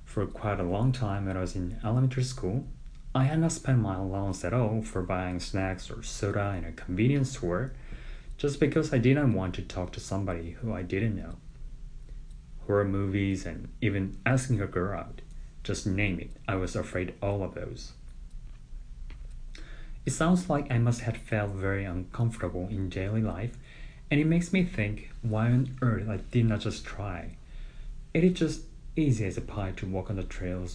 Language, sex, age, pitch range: Korean, male, 30-49, 95-130 Hz